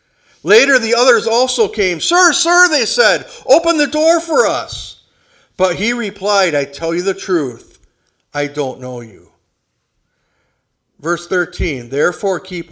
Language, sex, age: English, male, 50-69